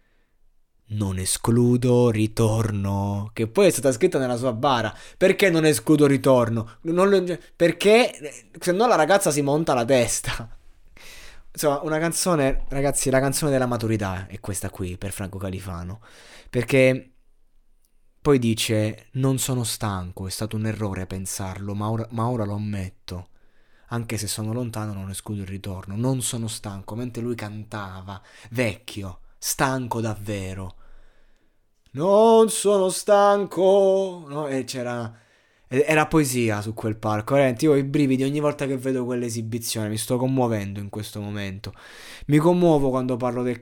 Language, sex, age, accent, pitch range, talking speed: Italian, male, 20-39, native, 110-145 Hz, 140 wpm